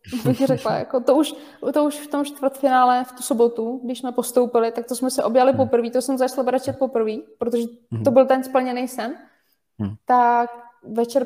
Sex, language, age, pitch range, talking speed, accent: female, Czech, 20-39, 235-265 Hz, 185 wpm, native